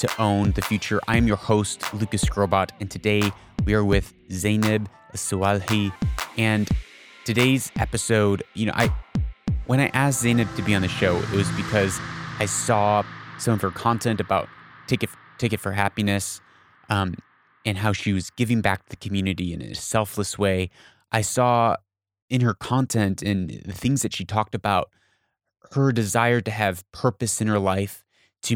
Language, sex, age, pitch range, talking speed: English, male, 30-49, 100-115 Hz, 170 wpm